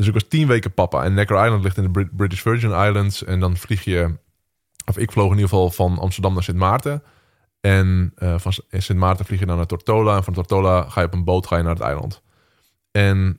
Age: 20-39